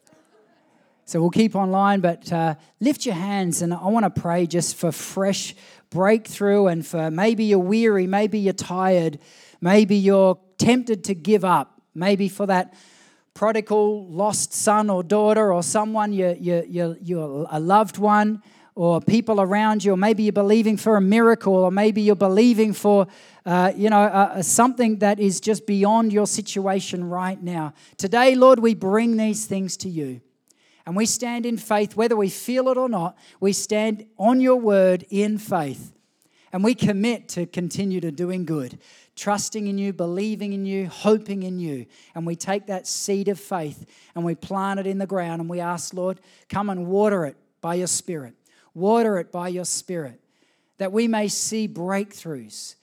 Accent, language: Australian, English